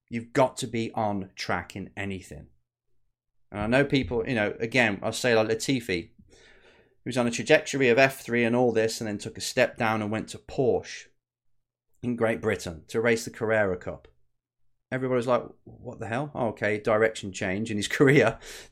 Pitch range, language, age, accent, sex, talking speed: 110-140 Hz, English, 30-49, British, male, 185 wpm